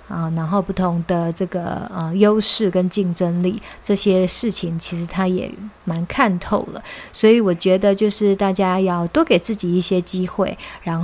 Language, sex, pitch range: Chinese, female, 180-205 Hz